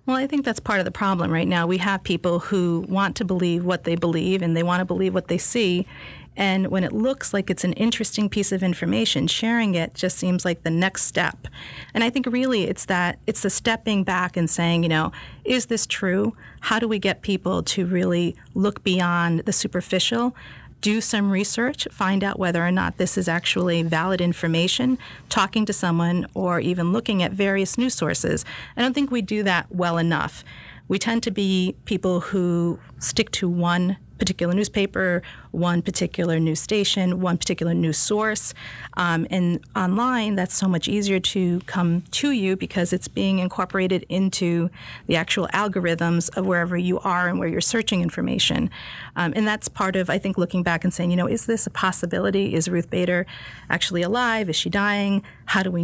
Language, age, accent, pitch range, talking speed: English, 40-59, American, 175-205 Hz, 195 wpm